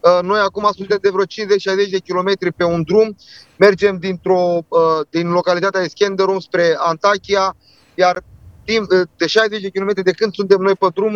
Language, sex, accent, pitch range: Romanian, male, native, 175-205 Hz